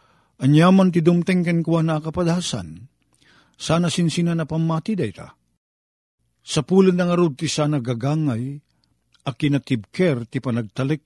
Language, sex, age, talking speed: Filipino, male, 50-69, 125 wpm